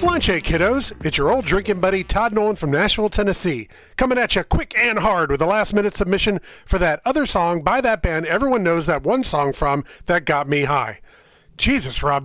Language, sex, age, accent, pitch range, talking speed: English, male, 40-59, American, 155-205 Hz, 200 wpm